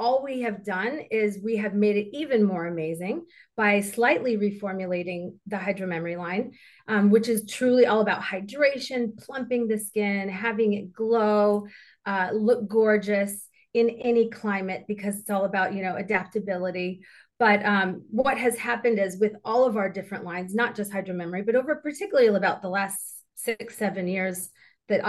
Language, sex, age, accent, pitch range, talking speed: English, female, 30-49, American, 190-230 Hz, 170 wpm